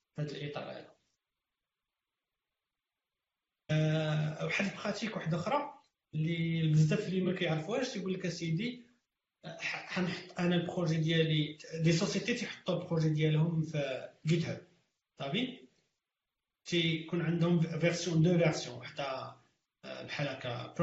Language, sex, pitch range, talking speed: Arabic, male, 160-205 Hz, 65 wpm